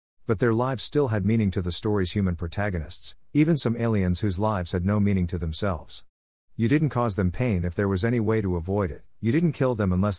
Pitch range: 90-115 Hz